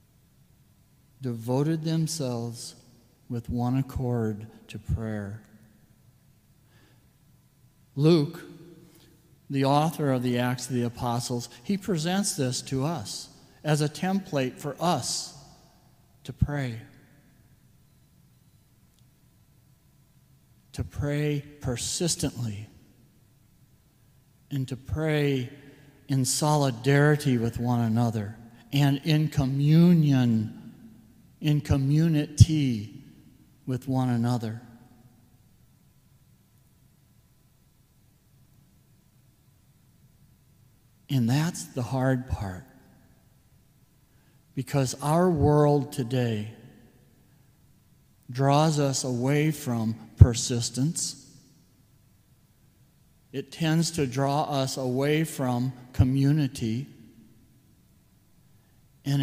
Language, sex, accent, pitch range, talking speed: English, male, American, 120-145 Hz, 70 wpm